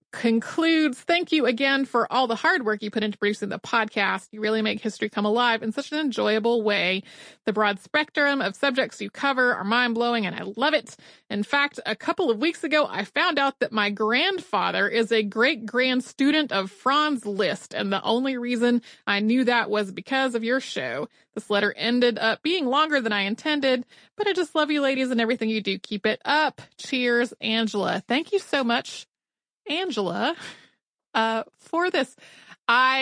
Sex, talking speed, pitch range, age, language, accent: female, 190 wpm, 205-260 Hz, 30-49, English, American